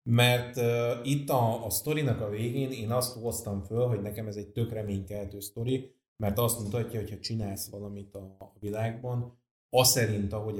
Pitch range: 105-120 Hz